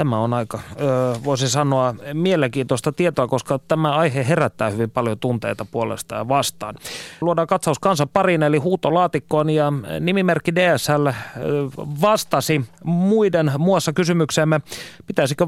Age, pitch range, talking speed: 30-49, 130-170 Hz, 120 wpm